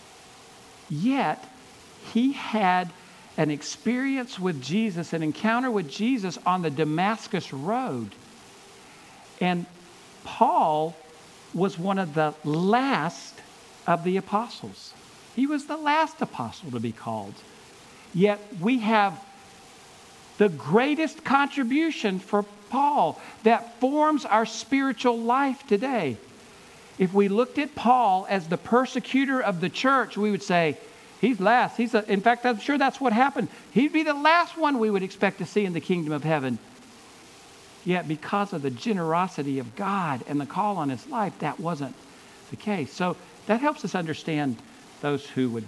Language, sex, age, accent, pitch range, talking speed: English, male, 50-69, American, 160-245 Hz, 145 wpm